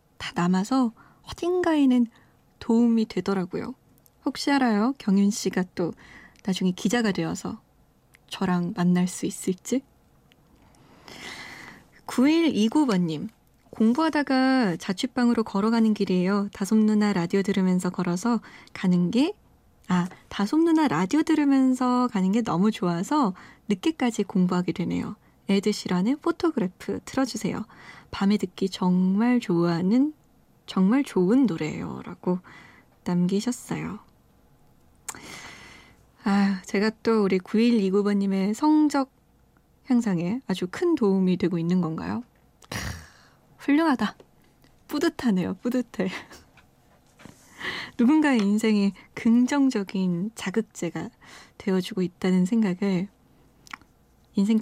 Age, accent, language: 20-39, native, Korean